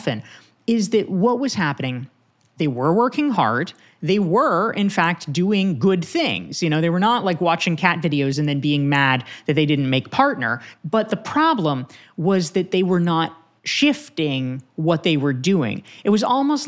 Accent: American